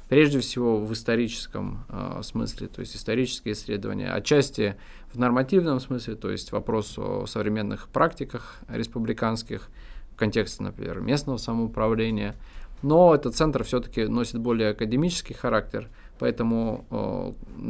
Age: 20-39